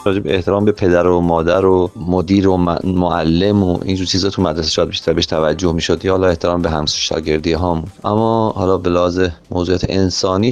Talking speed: 185 wpm